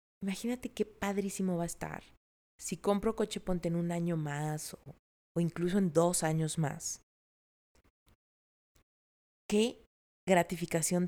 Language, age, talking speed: Spanish, 30-49, 125 wpm